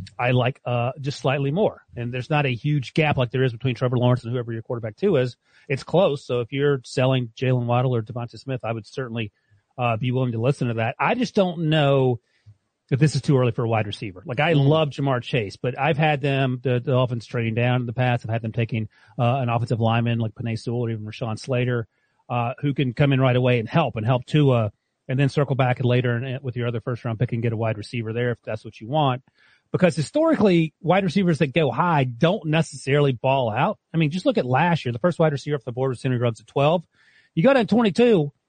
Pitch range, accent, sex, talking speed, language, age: 120-150 Hz, American, male, 250 wpm, English, 30-49